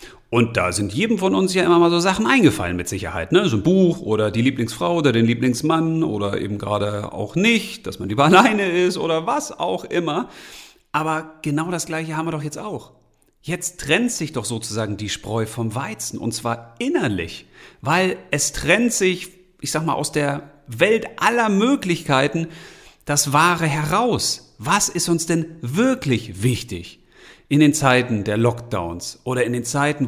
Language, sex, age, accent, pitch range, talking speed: German, male, 40-59, German, 115-175 Hz, 175 wpm